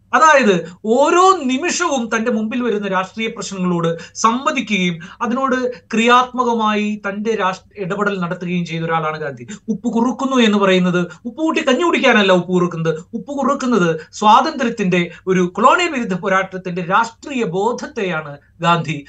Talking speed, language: 110 wpm, Malayalam